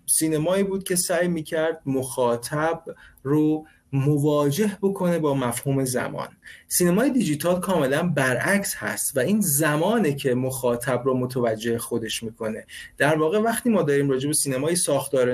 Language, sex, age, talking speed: Persian, male, 30-49, 135 wpm